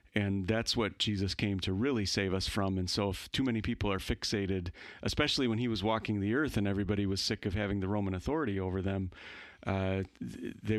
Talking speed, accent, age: 210 wpm, American, 40-59